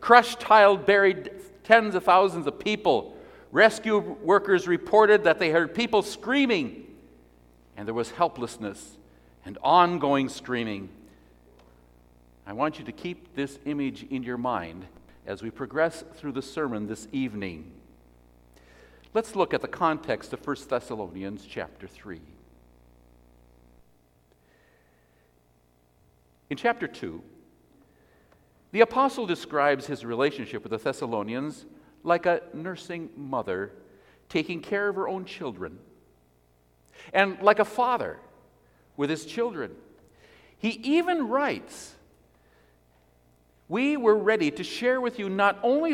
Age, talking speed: 60-79, 120 wpm